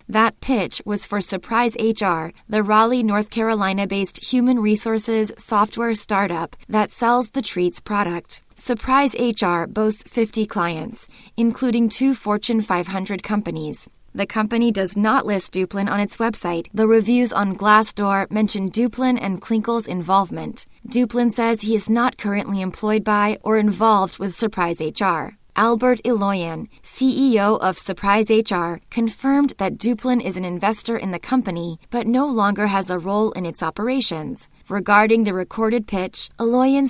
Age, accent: 20-39, American